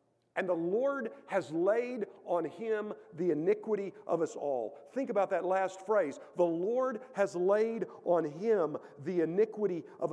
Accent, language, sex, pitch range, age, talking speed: American, English, male, 145-210 Hz, 50-69, 155 wpm